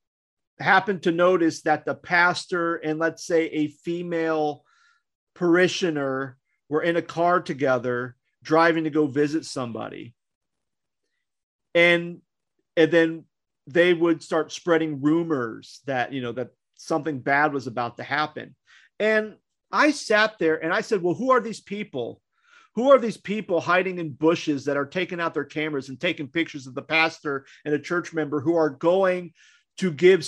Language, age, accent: English, 40-59, American